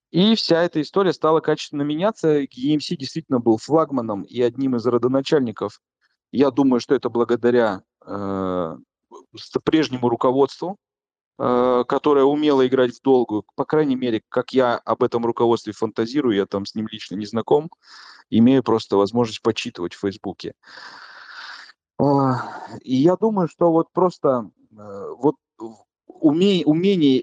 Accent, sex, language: native, male, Russian